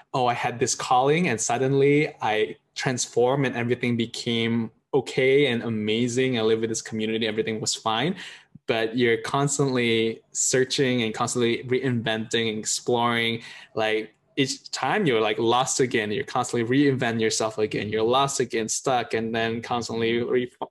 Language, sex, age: English, male, 10-29